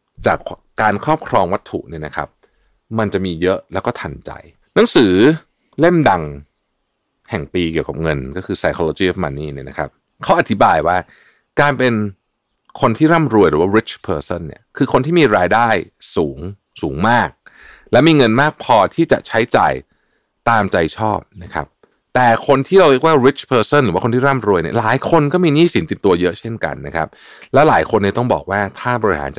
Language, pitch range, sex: Thai, 90-135 Hz, male